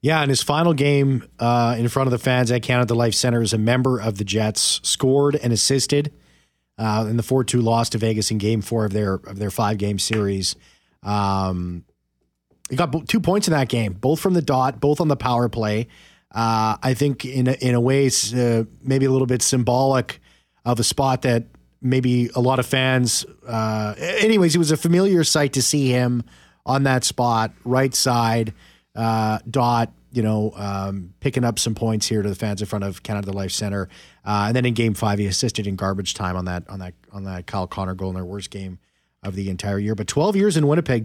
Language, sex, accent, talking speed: English, male, American, 215 wpm